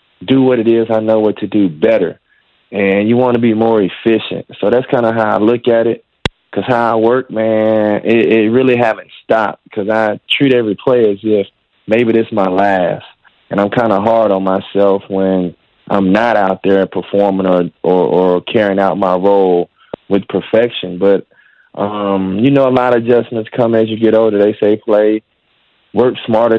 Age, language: 20-39, English